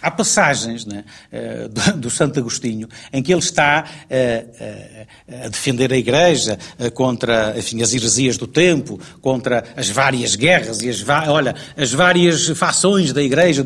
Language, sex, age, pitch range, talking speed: Portuguese, male, 60-79, 125-180 Hz, 135 wpm